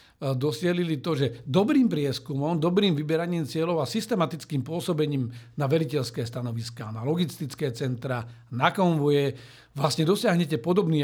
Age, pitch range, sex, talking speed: 50-69, 140-160 Hz, male, 120 wpm